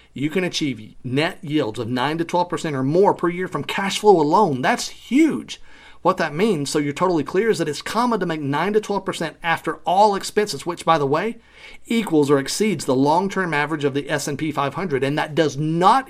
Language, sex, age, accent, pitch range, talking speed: English, male, 40-59, American, 140-190 Hz, 210 wpm